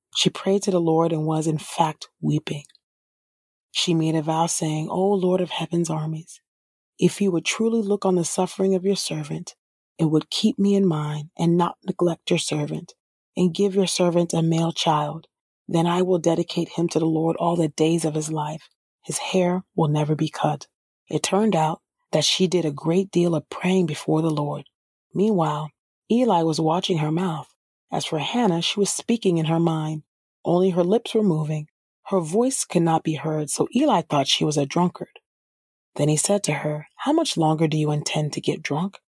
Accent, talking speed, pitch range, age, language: American, 200 wpm, 155-190 Hz, 30-49, English